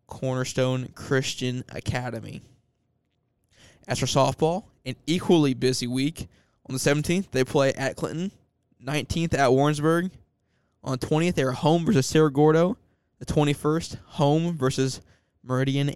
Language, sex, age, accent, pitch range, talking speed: English, male, 20-39, American, 120-140 Hz, 130 wpm